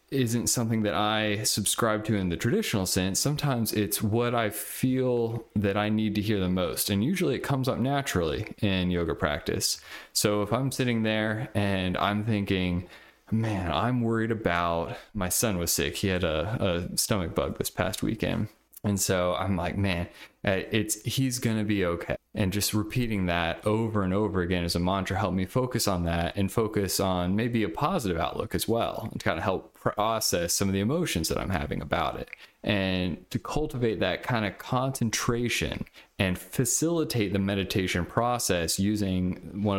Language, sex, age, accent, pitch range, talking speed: English, male, 20-39, American, 90-115 Hz, 180 wpm